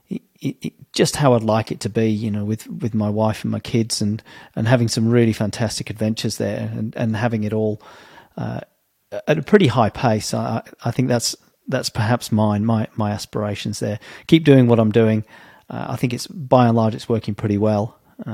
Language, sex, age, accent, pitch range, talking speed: English, male, 40-59, British, 110-125 Hz, 210 wpm